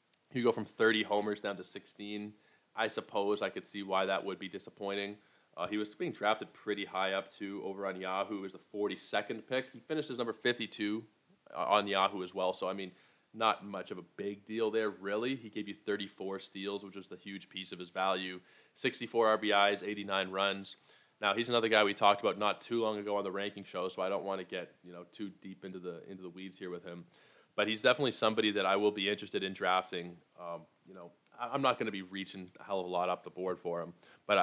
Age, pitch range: 20-39, 95-110 Hz